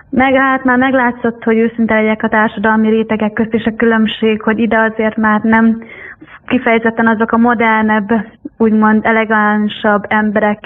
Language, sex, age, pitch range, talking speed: Hungarian, female, 20-39, 220-240 Hz, 140 wpm